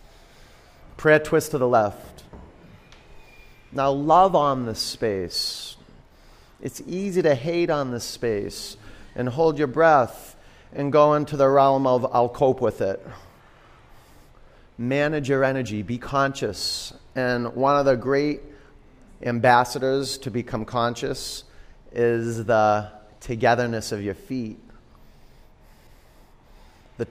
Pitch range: 105-135 Hz